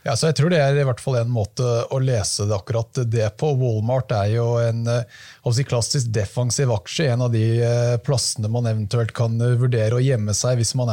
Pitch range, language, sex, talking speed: 115-140 Hz, English, male, 220 wpm